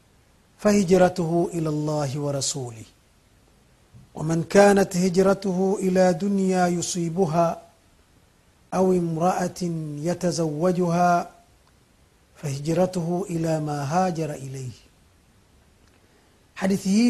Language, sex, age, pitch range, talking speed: Swahili, male, 50-69, 165-200 Hz, 65 wpm